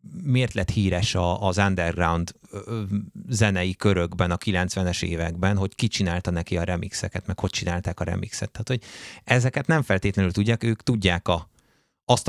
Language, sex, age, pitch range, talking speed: Hungarian, male, 30-49, 90-110 Hz, 145 wpm